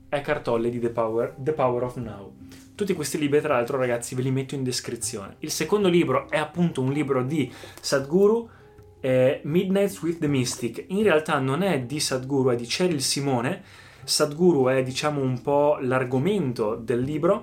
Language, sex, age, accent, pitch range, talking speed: Italian, male, 20-39, native, 125-155 Hz, 175 wpm